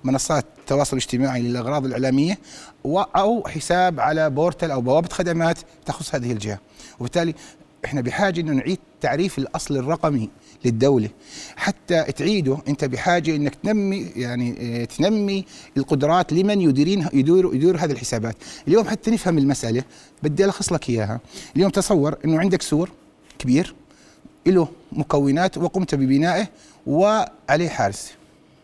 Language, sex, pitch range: Arabic, male, 135-175 Hz